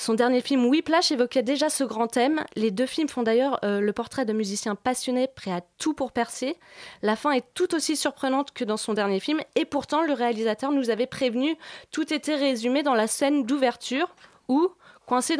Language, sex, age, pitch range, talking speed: French, female, 20-39, 230-295 Hz, 205 wpm